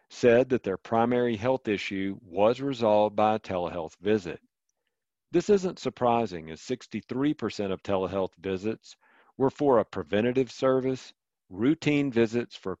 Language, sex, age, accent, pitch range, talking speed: English, male, 50-69, American, 100-130 Hz, 130 wpm